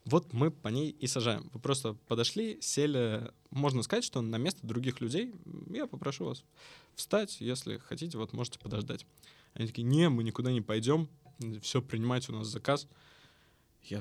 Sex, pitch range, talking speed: male, 110-145 Hz, 165 wpm